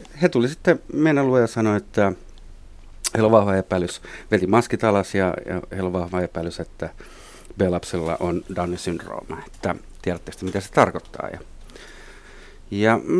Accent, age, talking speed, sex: native, 50-69, 140 wpm, male